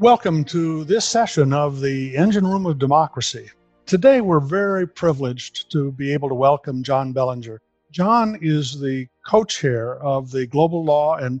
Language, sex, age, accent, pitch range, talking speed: English, male, 50-69, American, 135-170 Hz, 160 wpm